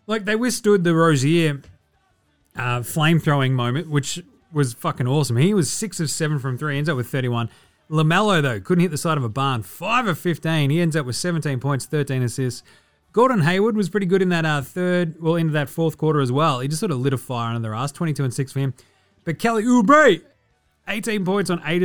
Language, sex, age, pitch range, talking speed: English, male, 30-49, 140-190 Hz, 220 wpm